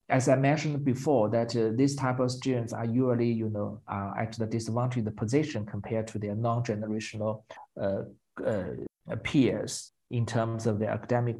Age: 50-69